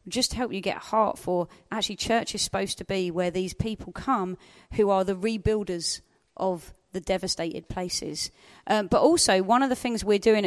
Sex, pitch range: female, 185-230 Hz